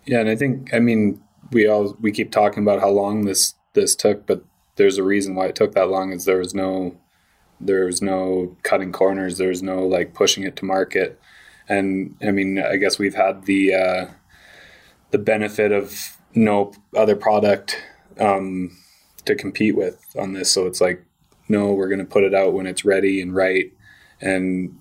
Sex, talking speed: male, 190 wpm